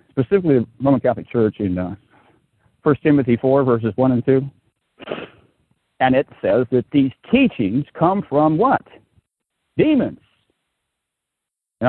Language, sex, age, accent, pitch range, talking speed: English, male, 50-69, American, 120-165 Hz, 125 wpm